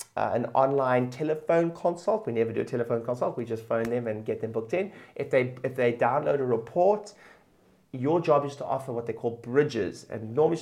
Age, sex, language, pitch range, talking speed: 30-49, male, English, 125-170 Hz, 215 wpm